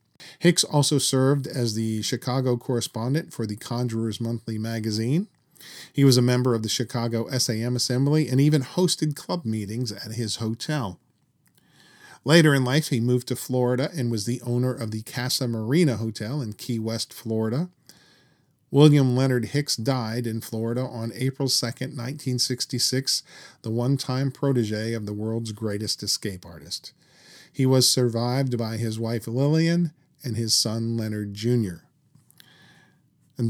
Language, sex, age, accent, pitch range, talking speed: English, male, 40-59, American, 110-140 Hz, 145 wpm